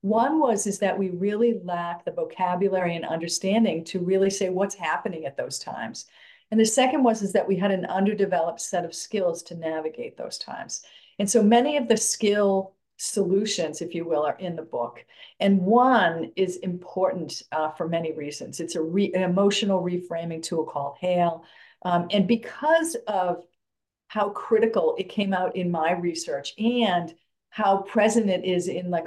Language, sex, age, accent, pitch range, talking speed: English, female, 50-69, American, 170-200 Hz, 180 wpm